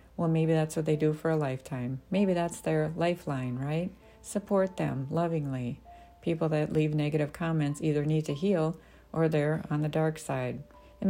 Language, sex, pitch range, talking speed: English, female, 145-170 Hz, 180 wpm